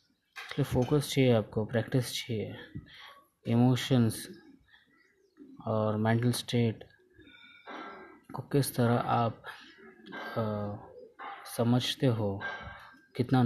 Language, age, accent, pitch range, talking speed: Hindi, 20-39, native, 110-130 Hz, 75 wpm